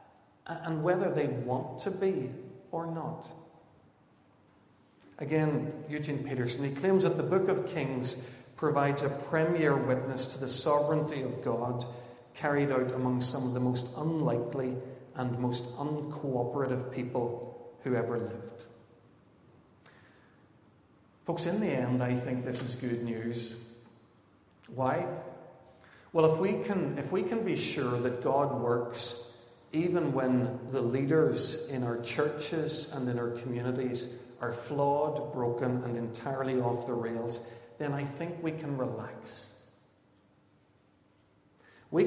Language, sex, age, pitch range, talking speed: English, male, 50-69, 120-150 Hz, 130 wpm